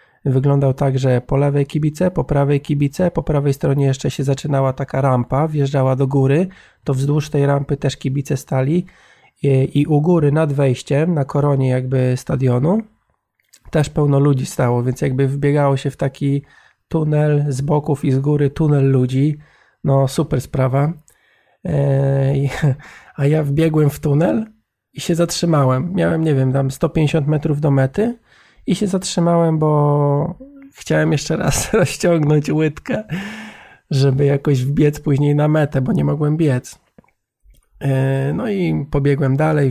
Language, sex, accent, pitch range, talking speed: Polish, male, native, 135-155 Hz, 145 wpm